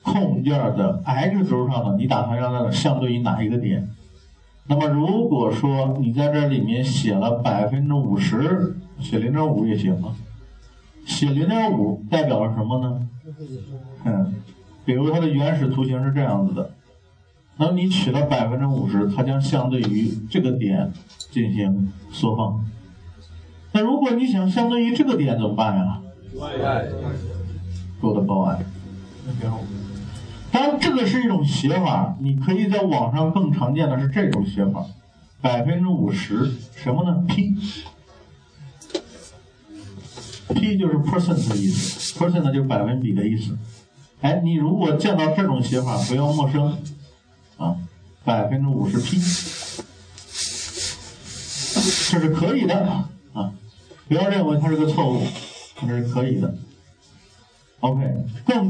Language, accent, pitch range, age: Chinese, native, 105-160 Hz, 50-69